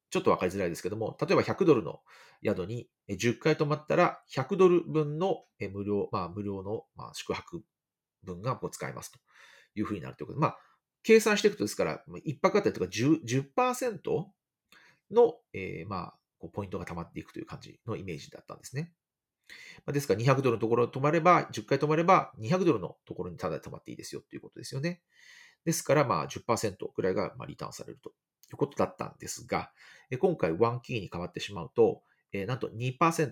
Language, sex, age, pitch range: Japanese, male, 40-59, 110-170 Hz